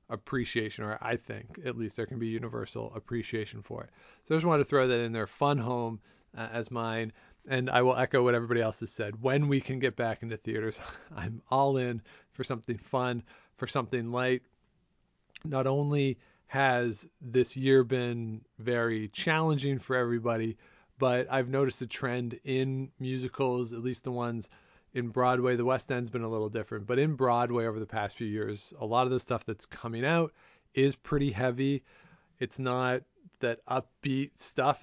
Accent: American